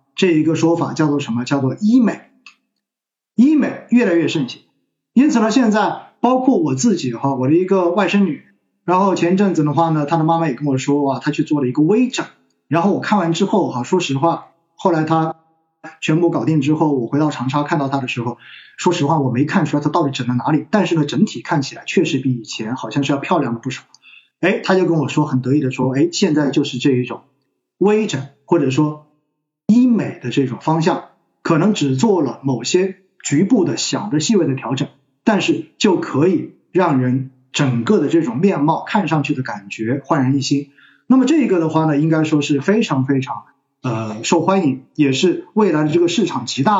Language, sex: Chinese, male